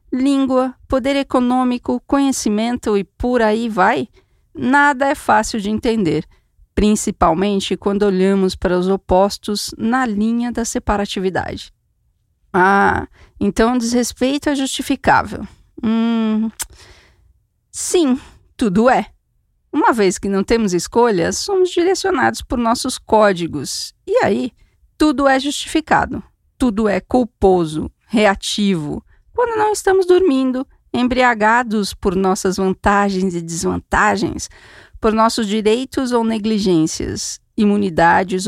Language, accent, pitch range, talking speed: Portuguese, Brazilian, 190-255 Hz, 110 wpm